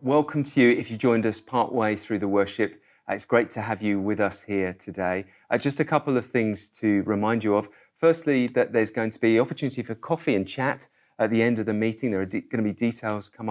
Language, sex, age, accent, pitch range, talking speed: English, male, 30-49, British, 110-135 Hz, 240 wpm